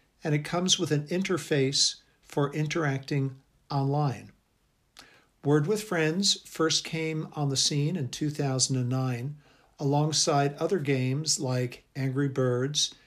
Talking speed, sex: 115 wpm, male